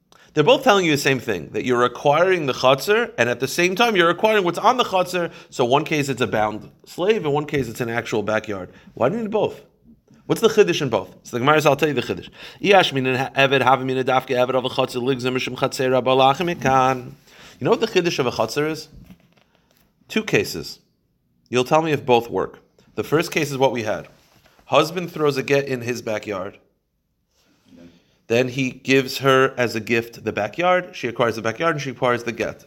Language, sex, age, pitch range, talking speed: English, male, 30-49, 115-150 Hz, 185 wpm